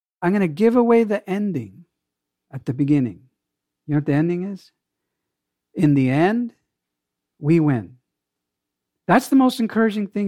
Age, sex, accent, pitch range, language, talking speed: 50-69, male, American, 140-200 Hz, English, 150 wpm